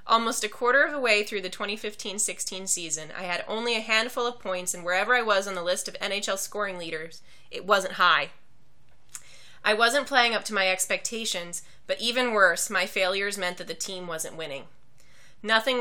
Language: English